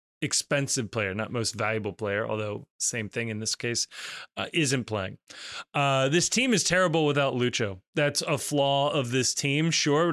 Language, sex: English, male